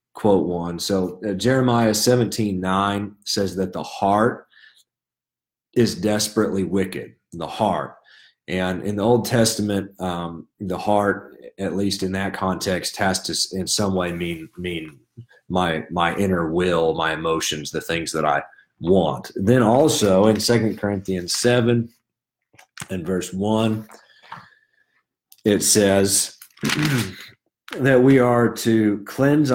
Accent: American